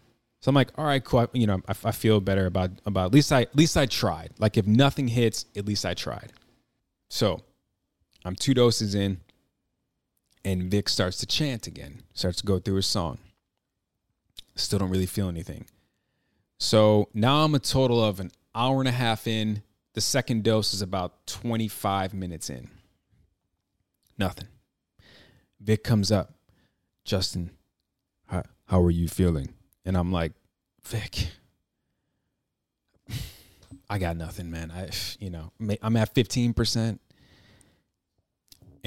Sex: male